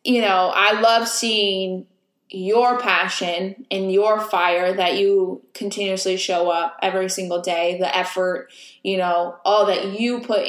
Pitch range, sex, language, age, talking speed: 185-235 Hz, female, English, 20-39, 150 wpm